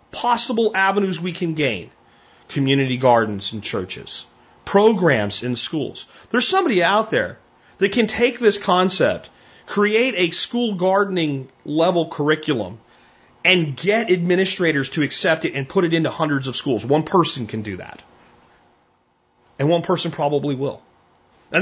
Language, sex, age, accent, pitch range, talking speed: English, male, 30-49, American, 145-220 Hz, 140 wpm